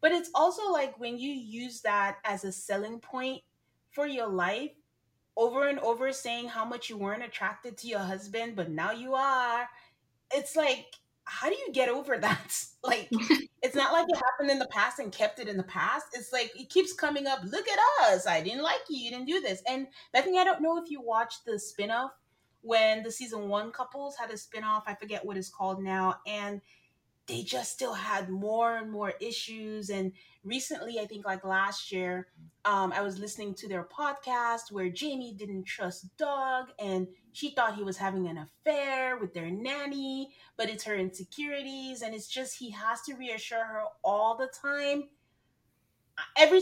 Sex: female